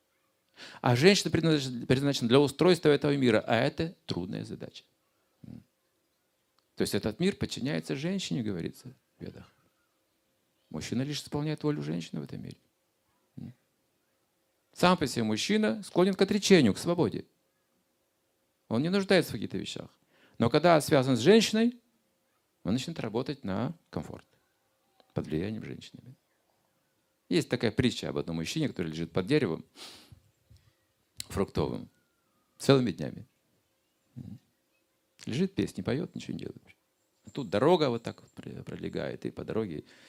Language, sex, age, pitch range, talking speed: Russian, male, 50-69, 115-185 Hz, 125 wpm